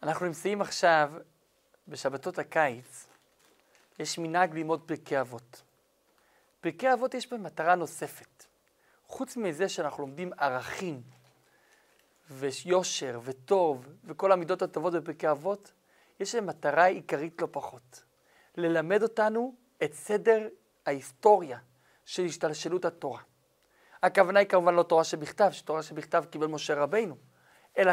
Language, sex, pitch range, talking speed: Hebrew, male, 150-200 Hz, 115 wpm